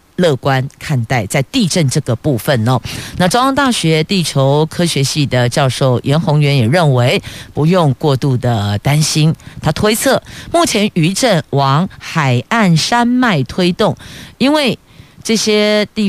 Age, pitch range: 50-69, 130-175 Hz